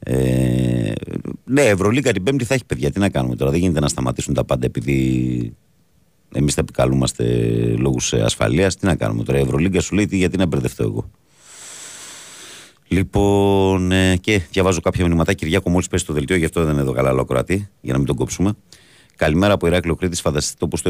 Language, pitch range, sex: Greek, 70-95 Hz, male